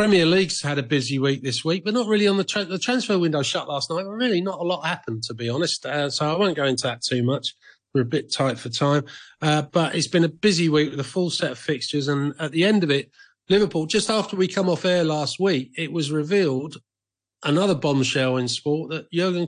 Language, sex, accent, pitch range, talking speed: English, male, British, 135-170 Hz, 245 wpm